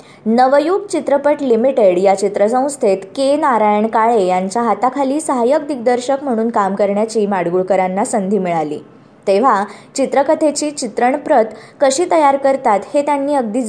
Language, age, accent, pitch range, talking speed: Marathi, 20-39, native, 205-275 Hz, 120 wpm